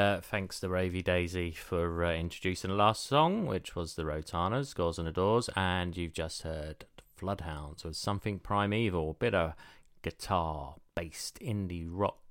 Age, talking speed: 30-49, 160 wpm